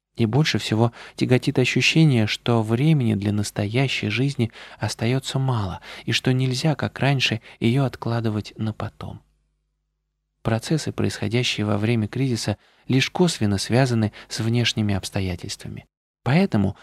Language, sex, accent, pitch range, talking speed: Russian, male, native, 110-140 Hz, 120 wpm